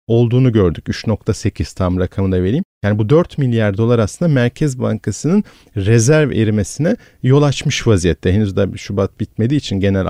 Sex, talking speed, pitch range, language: male, 150 wpm, 100-135 Hz, Turkish